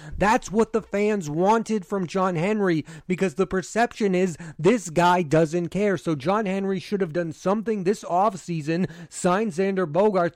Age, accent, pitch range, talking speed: 30-49, American, 165-210 Hz, 160 wpm